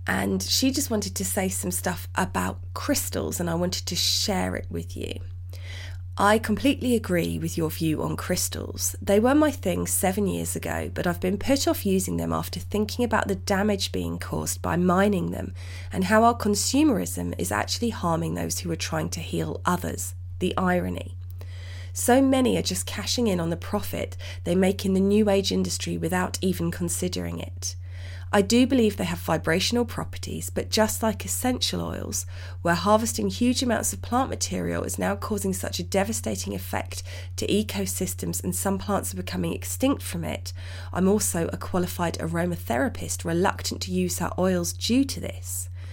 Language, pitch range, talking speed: English, 90-95 Hz, 175 wpm